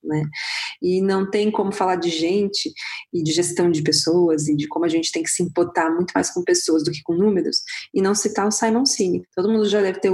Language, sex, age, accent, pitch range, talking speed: Portuguese, female, 20-39, Brazilian, 175-215 Hz, 245 wpm